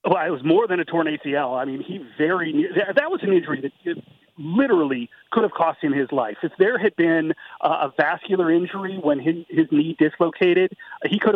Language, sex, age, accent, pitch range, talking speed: English, male, 40-59, American, 150-215 Hz, 205 wpm